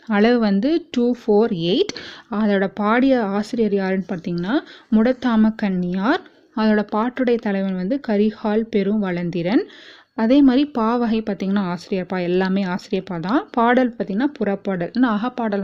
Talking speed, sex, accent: 120 wpm, female, native